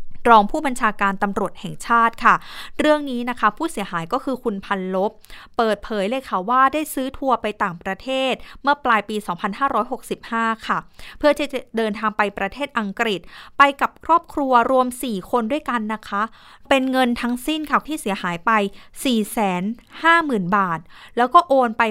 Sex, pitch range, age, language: female, 205-260 Hz, 20-39, Thai